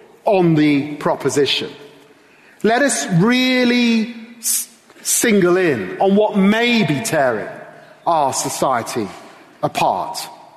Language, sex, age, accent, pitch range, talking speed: English, male, 40-59, British, 200-270 Hz, 90 wpm